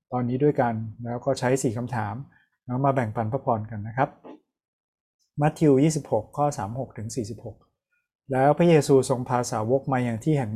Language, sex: Thai, male